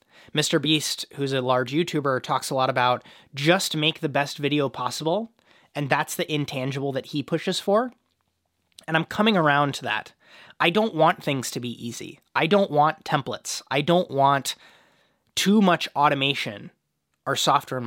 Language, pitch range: English, 140-175 Hz